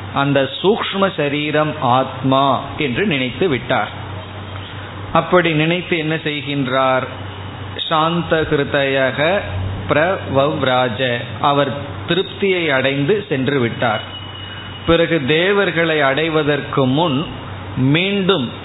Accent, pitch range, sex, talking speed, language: native, 120-160 Hz, male, 65 wpm, Tamil